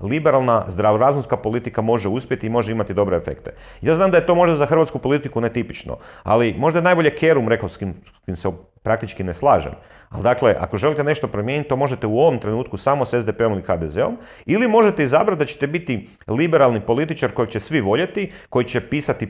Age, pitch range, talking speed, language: 40-59, 100-135 Hz, 195 wpm, Croatian